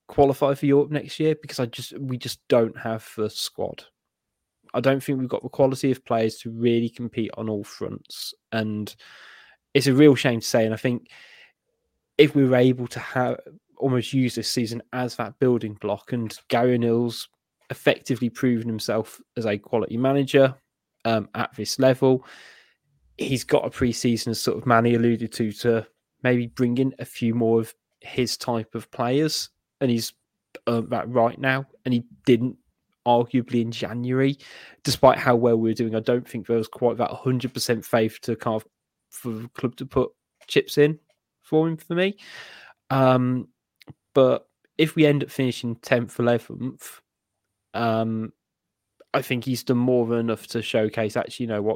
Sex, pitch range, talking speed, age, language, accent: male, 115-130 Hz, 180 wpm, 10-29, English, British